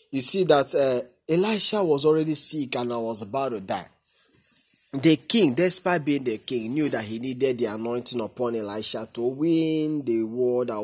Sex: male